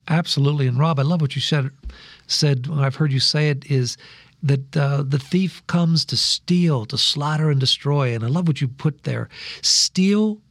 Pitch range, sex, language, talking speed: 140-190 Hz, male, English, 200 wpm